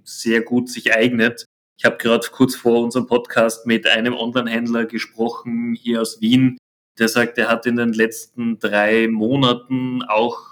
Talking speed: 160 wpm